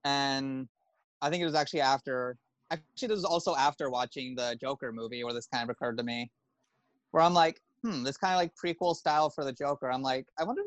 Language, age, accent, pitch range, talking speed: English, 20-39, American, 125-140 Hz, 230 wpm